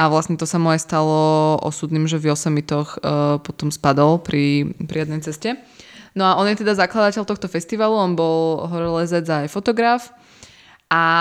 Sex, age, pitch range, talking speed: female, 20-39, 160-195 Hz, 160 wpm